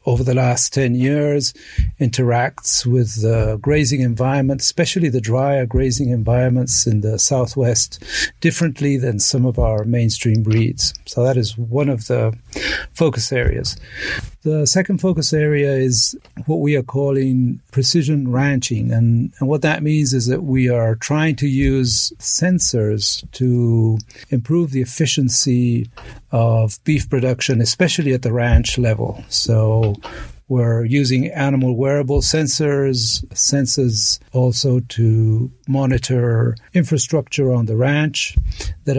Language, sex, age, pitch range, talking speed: English, male, 50-69, 115-140 Hz, 130 wpm